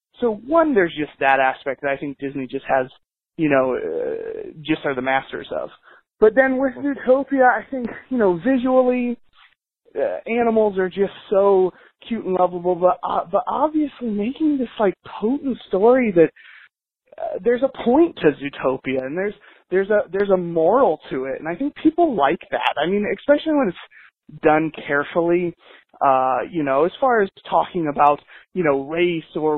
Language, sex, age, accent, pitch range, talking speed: English, male, 20-39, American, 155-240 Hz, 175 wpm